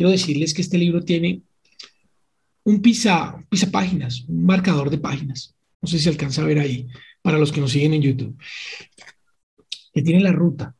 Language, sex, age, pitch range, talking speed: Spanish, male, 40-59, 145-210 Hz, 190 wpm